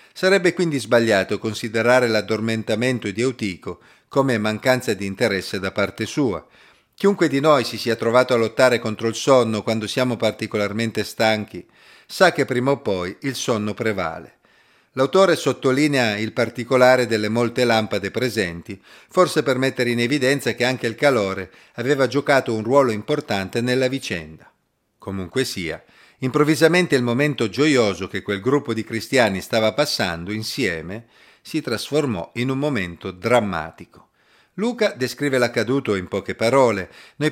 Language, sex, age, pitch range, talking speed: Italian, male, 40-59, 110-135 Hz, 140 wpm